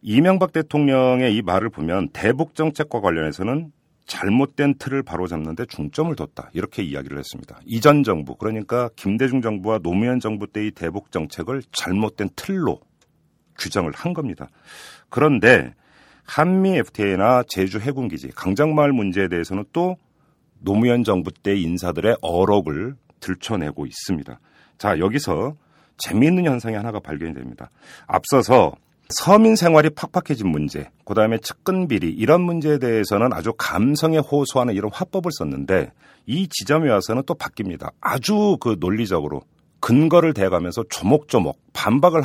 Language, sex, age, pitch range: Korean, male, 40-59, 95-155 Hz